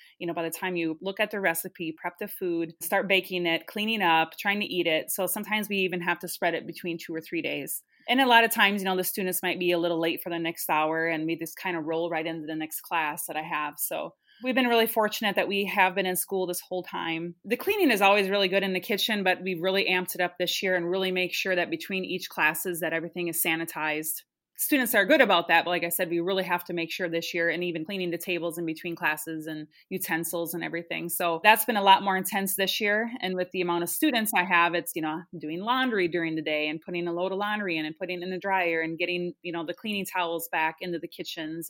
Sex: female